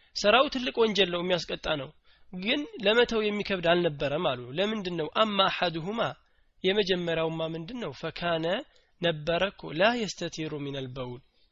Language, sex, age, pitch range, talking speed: Amharic, male, 20-39, 150-200 Hz, 120 wpm